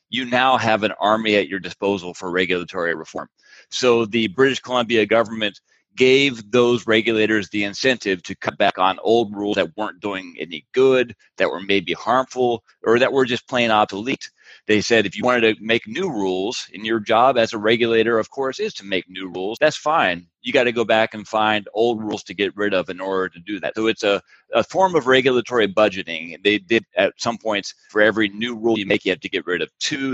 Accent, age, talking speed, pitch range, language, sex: American, 30-49, 220 wpm, 100-120 Hz, English, male